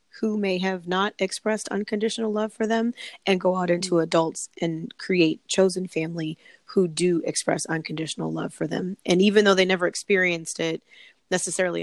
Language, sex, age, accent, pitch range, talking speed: English, female, 20-39, American, 160-190 Hz, 165 wpm